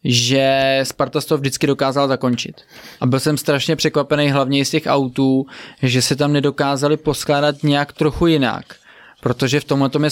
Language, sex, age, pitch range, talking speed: Czech, male, 20-39, 130-150 Hz, 165 wpm